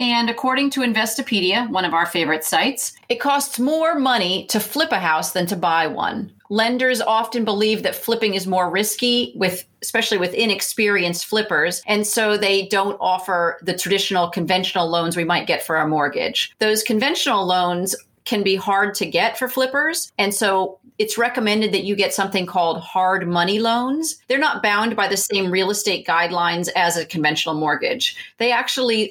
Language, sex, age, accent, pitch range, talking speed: English, female, 40-59, American, 185-235 Hz, 175 wpm